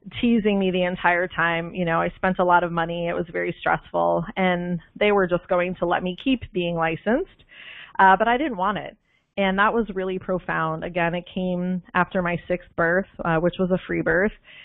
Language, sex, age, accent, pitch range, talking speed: English, female, 30-49, American, 170-195 Hz, 215 wpm